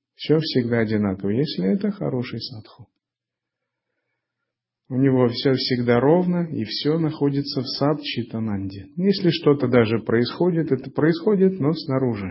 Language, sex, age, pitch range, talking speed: Russian, male, 40-59, 110-150 Hz, 125 wpm